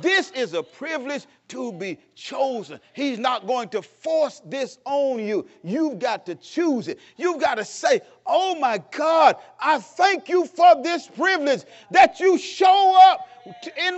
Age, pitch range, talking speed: 40-59, 250-360 Hz, 165 wpm